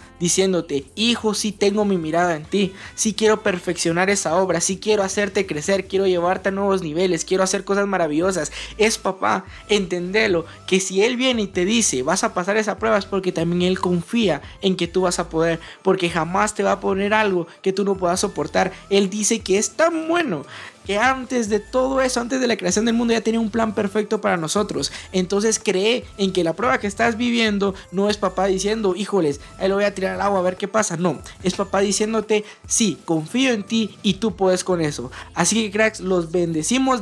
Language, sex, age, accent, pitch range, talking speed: Spanish, male, 20-39, Colombian, 180-215 Hz, 215 wpm